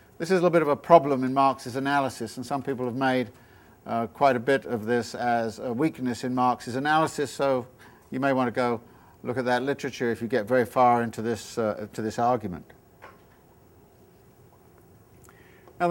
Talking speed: 190 wpm